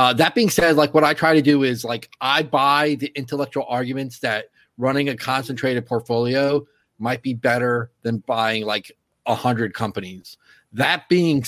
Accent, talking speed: American, 175 wpm